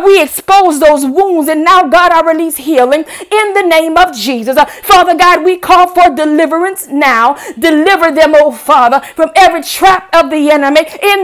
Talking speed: 175 wpm